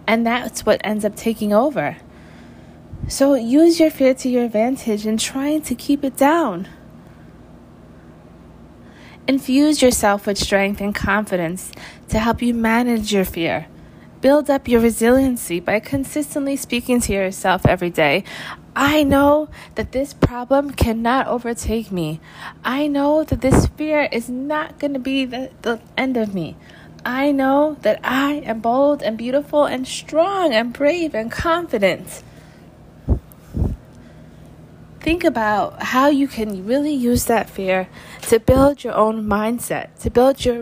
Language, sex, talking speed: English, female, 140 wpm